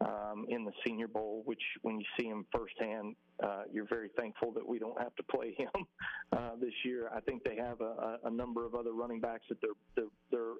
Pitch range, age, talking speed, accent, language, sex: 110-125 Hz, 40-59, 225 wpm, American, English, male